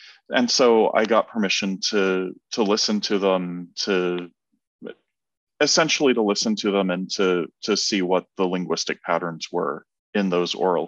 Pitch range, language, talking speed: 95-110 Hz, English, 155 wpm